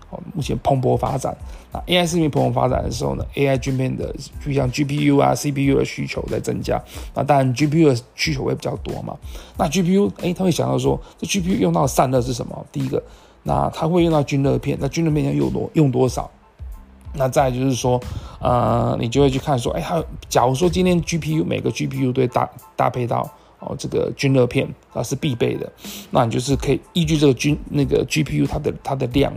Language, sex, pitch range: Chinese, male, 125-150 Hz